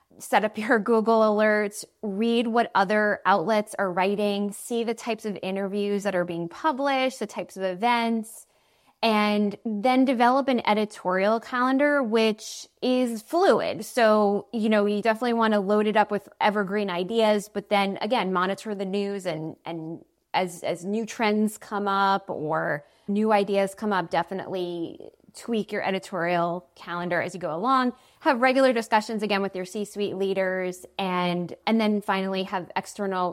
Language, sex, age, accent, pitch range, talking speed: English, female, 20-39, American, 195-230 Hz, 160 wpm